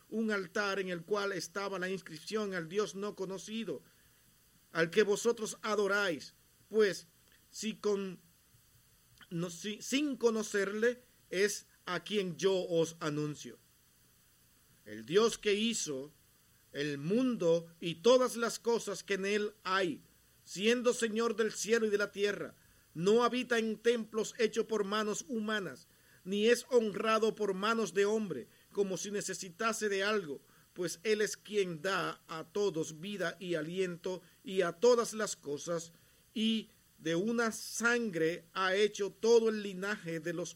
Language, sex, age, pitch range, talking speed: Spanish, male, 50-69, 170-215 Hz, 145 wpm